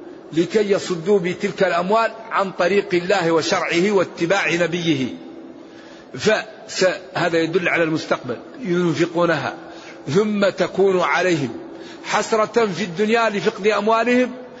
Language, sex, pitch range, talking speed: Arabic, male, 165-215 Hz, 95 wpm